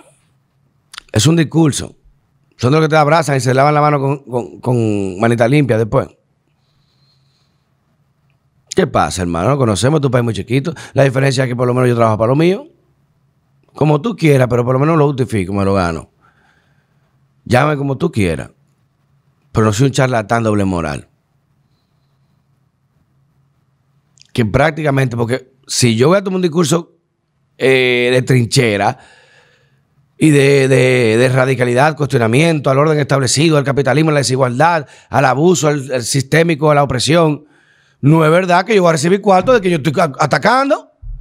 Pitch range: 130-155 Hz